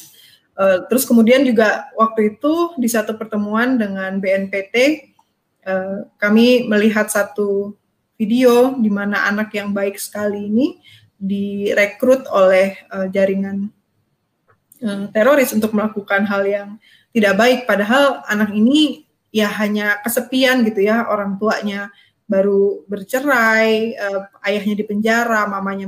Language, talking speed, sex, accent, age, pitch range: Indonesian, 120 wpm, female, native, 20-39, 205-240 Hz